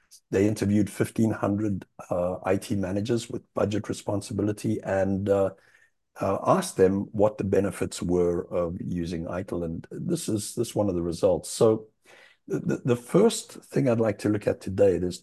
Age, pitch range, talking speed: 60-79, 95-110 Hz, 160 wpm